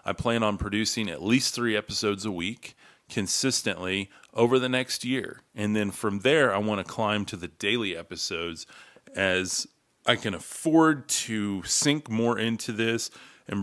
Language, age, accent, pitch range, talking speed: English, 30-49, American, 90-115 Hz, 165 wpm